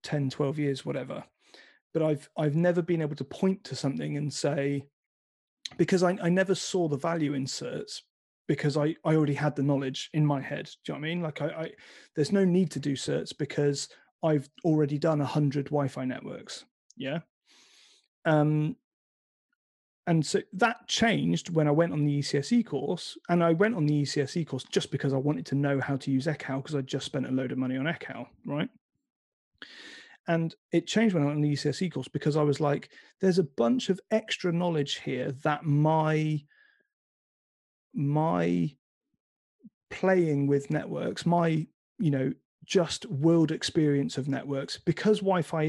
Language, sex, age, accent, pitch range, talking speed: English, male, 30-49, British, 140-175 Hz, 180 wpm